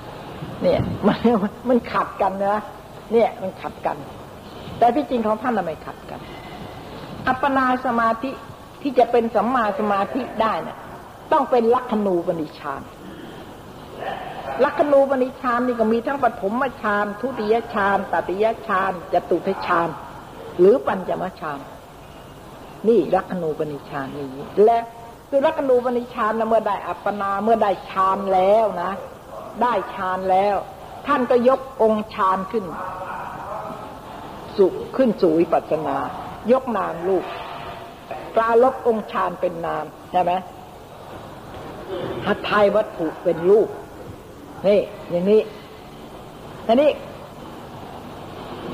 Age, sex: 60-79, female